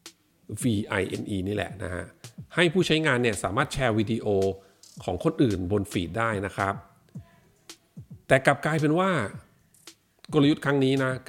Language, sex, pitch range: Thai, male, 105-140 Hz